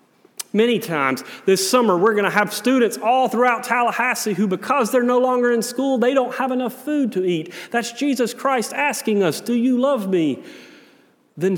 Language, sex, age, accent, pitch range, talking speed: English, male, 40-59, American, 165-230 Hz, 185 wpm